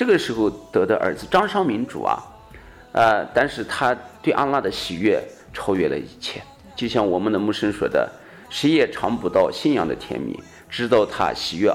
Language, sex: Chinese, male